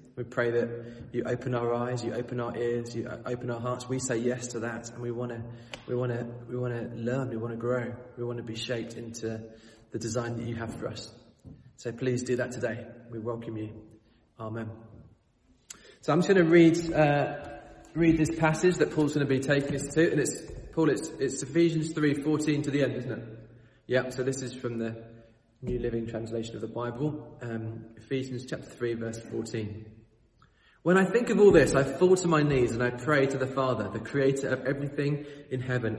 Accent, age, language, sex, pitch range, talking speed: British, 20-39, English, male, 115-145 Hz, 205 wpm